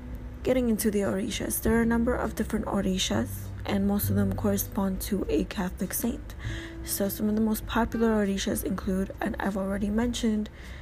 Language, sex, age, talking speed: English, female, 20-39, 180 wpm